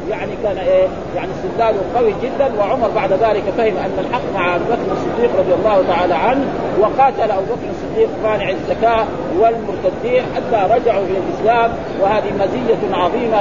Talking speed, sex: 150 wpm, male